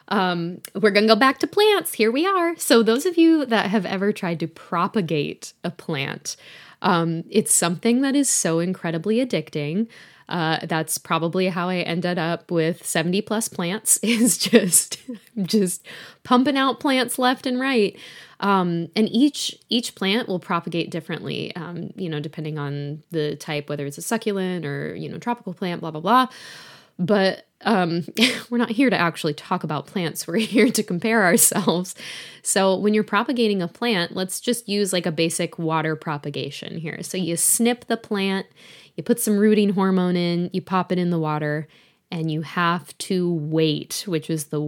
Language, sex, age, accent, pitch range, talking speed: English, female, 10-29, American, 165-220 Hz, 180 wpm